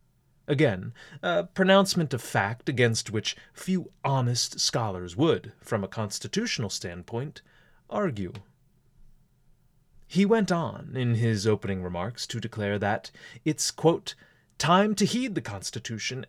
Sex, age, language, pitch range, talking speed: male, 30-49, English, 115-165 Hz, 120 wpm